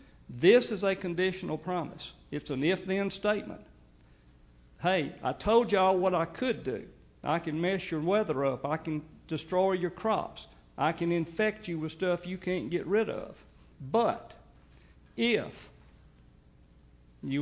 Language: English